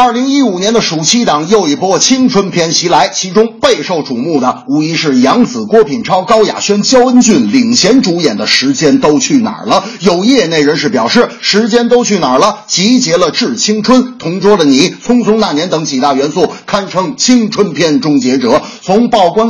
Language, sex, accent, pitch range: Chinese, male, native, 200-250 Hz